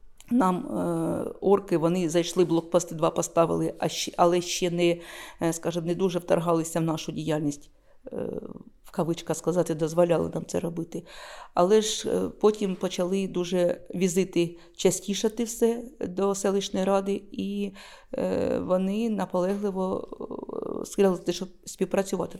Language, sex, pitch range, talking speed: Ukrainian, female, 170-200 Hz, 115 wpm